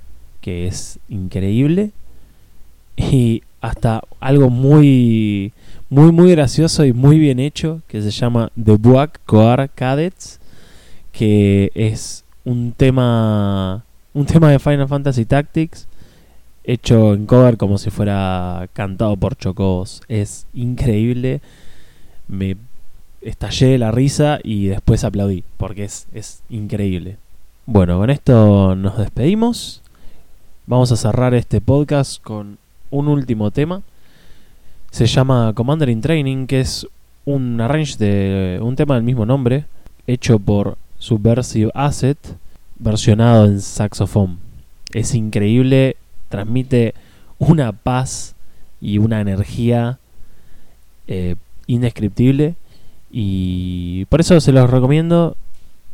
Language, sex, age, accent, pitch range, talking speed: English, male, 20-39, Argentinian, 100-135 Hz, 115 wpm